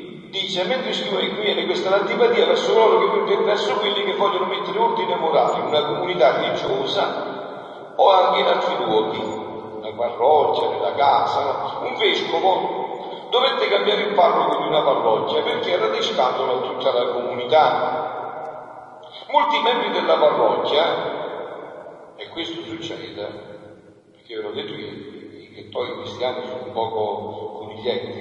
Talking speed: 135 wpm